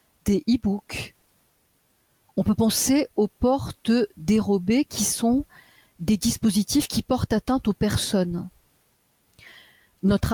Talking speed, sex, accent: 105 wpm, female, French